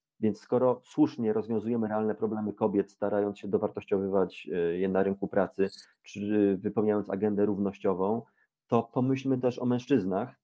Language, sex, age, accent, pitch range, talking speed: Polish, male, 30-49, native, 105-125 Hz, 130 wpm